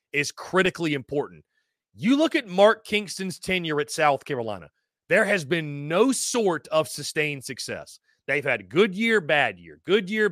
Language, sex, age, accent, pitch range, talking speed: English, male, 30-49, American, 150-195 Hz, 165 wpm